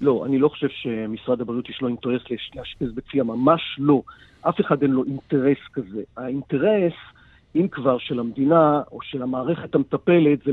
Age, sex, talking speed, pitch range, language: 50-69, male, 160 wpm, 135-165 Hz, English